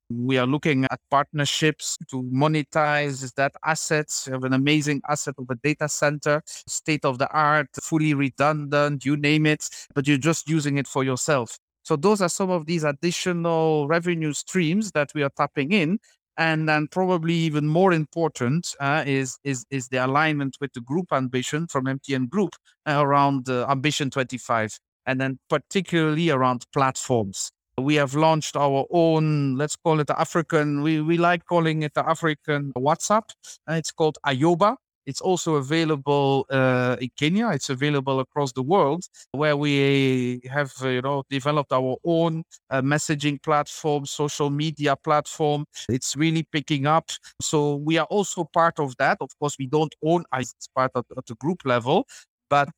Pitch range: 135-160 Hz